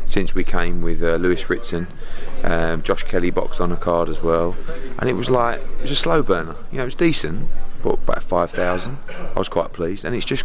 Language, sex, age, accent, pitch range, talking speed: English, male, 30-49, British, 85-95 Hz, 230 wpm